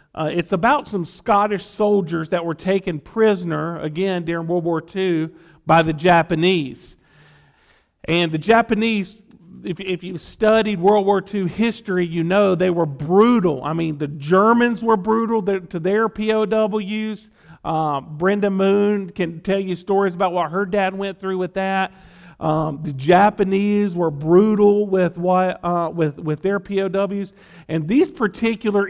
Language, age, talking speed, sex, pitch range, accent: English, 40-59, 155 wpm, male, 170-205 Hz, American